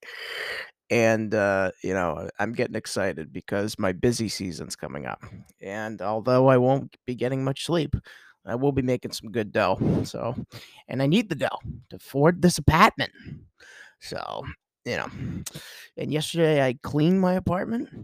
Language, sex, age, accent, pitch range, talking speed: English, male, 20-39, American, 115-140 Hz, 155 wpm